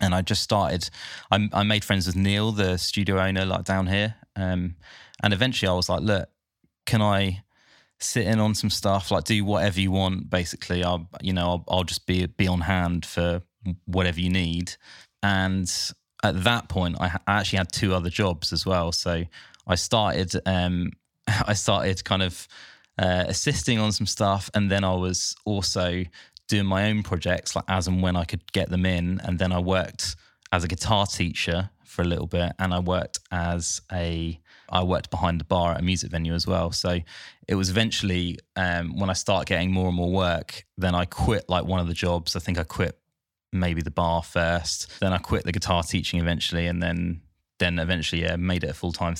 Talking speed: 205 wpm